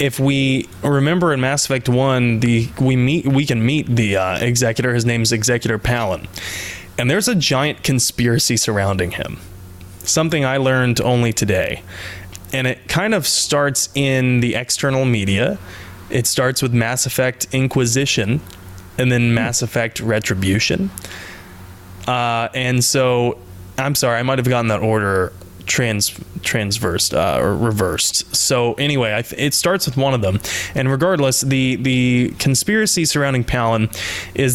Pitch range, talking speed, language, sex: 100-130 Hz, 150 wpm, English, male